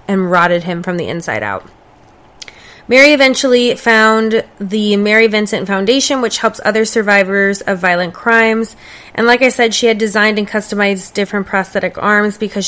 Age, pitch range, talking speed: 20-39, 185-225 Hz, 160 wpm